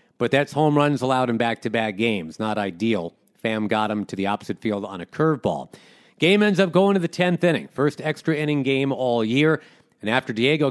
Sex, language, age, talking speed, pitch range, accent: male, English, 40-59, 205 wpm, 115-155 Hz, American